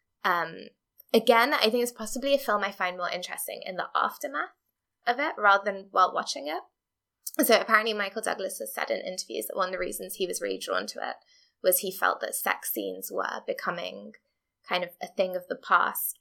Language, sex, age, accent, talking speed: English, female, 10-29, British, 205 wpm